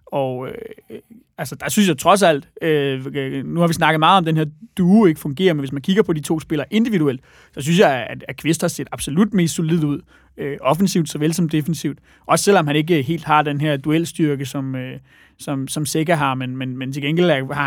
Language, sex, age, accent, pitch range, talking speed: Danish, male, 30-49, native, 140-170 Hz, 235 wpm